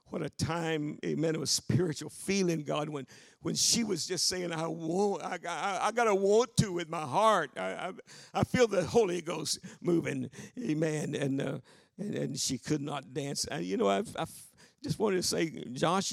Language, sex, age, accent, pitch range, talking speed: English, male, 50-69, American, 150-200 Hz, 195 wpm